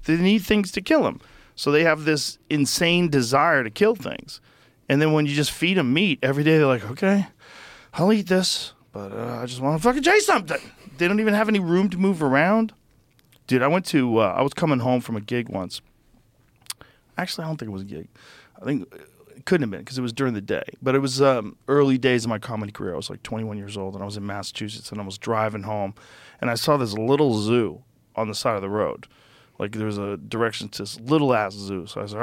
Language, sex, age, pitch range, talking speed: English, male, 40-59, 110-150 Hz, 250 wpm